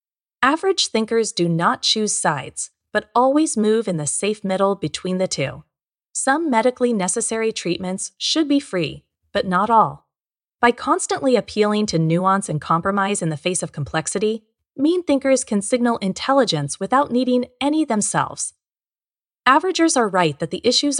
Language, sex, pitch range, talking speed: English, female, 175-250 Hz, 150 wpm